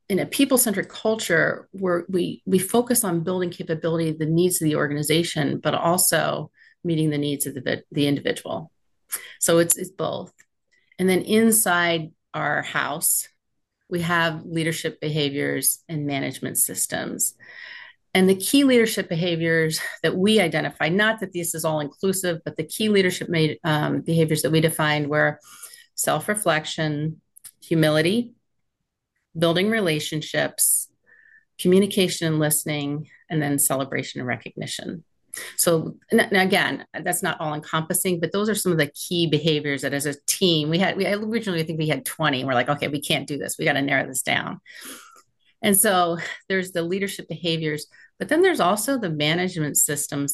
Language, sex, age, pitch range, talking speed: English, female, 40-59, 155-190 Hz, 160 wpm